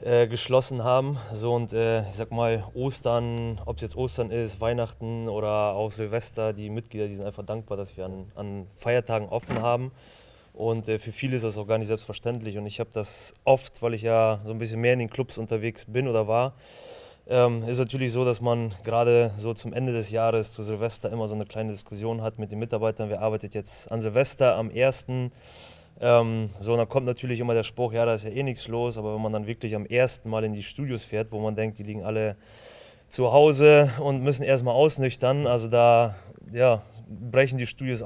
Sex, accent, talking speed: male, German, 210 wpm